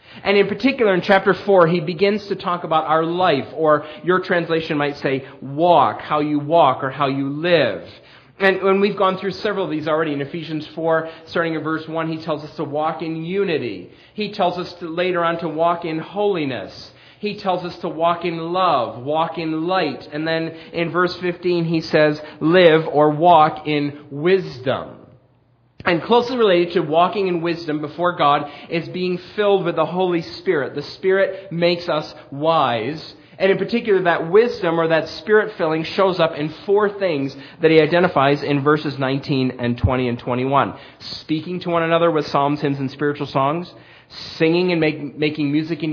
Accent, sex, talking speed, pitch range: American, male, 185 wpm, 145-175 Hz